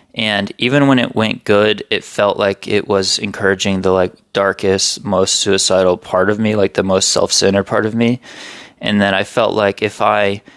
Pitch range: 95-105 Hz